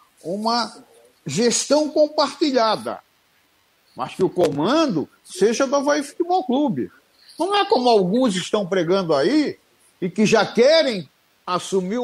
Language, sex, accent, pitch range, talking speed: Portuguese, male, Brazilian, 175-275 Hz, 120 wpm